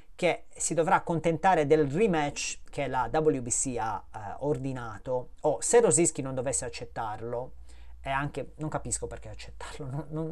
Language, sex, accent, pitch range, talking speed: Italian, male, native, 120-160 Hz, 155 wpm